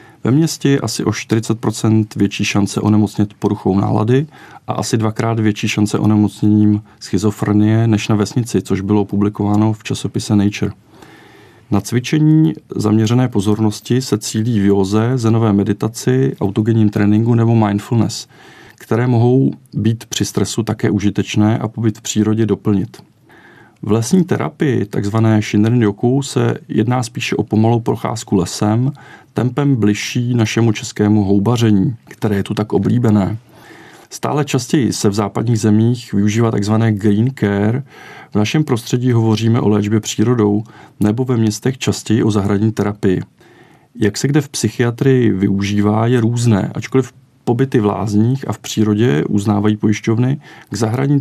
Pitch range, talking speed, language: 105-120 Hz, 135 wpm, Czech